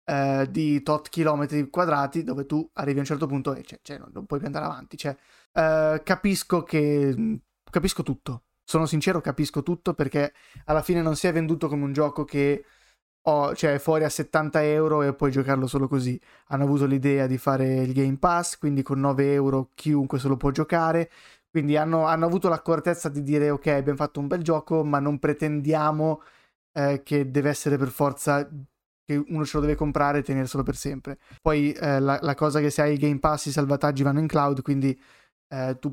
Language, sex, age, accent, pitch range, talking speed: Italian, male, 20-39, native, 140-160 Hz, 190 wpm